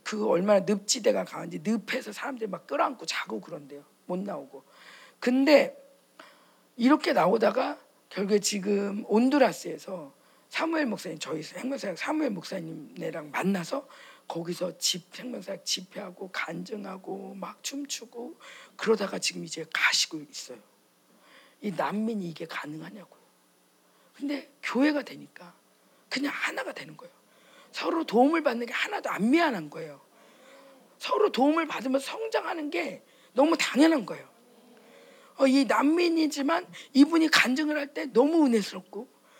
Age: 40-59